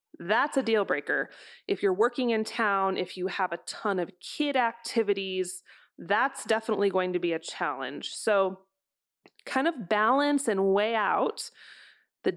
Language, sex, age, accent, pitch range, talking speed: English, female, 30-49, American, 185-245 Hz, 155 wpm